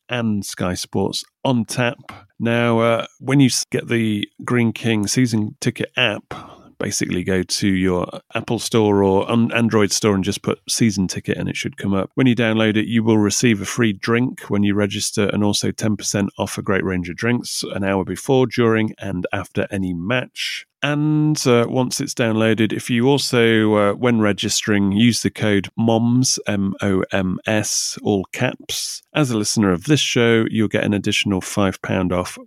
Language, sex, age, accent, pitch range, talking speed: English, male, 30-49, British, 95-120 Hz, 180 wpm